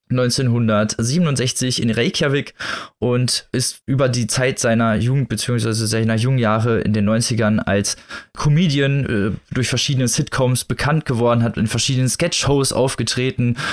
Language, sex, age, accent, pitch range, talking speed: German, male, 20-39, German, 115-140 Hz, 125 wpm